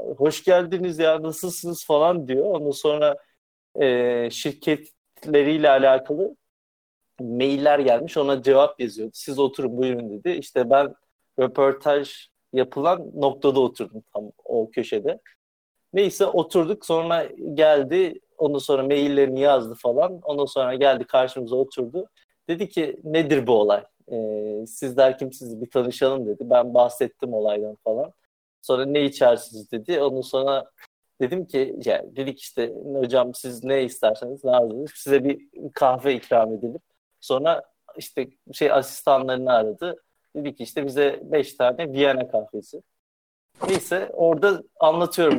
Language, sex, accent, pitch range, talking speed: Turkish, male, native, 125-155 Hz, 125 wpm